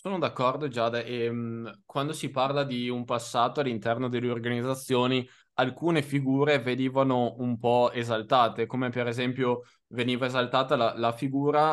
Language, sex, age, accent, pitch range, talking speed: Italian, male, 20-39, native, 115-135 Hz, 145 wpm